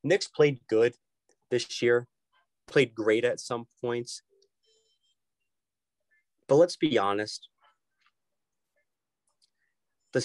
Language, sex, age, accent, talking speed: English, male, 30-49, American, 90 wpm